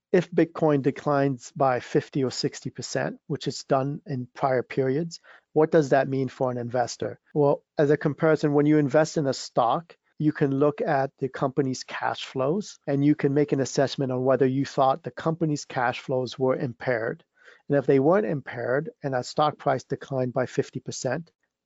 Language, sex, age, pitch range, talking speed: English, male, 50-69, 130-150 Hz, 185 wpm